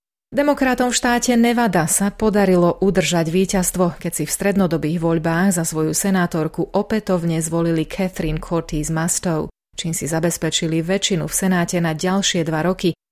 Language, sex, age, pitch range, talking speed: Slovak, female, 30-49, 160-195 Hz, 140 wpm